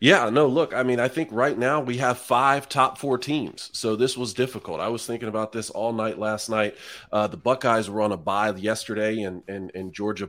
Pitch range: 105-120 Hz